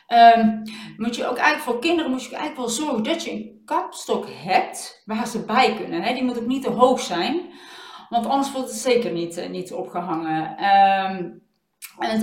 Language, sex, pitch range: Dutch, female, 215-260 Hz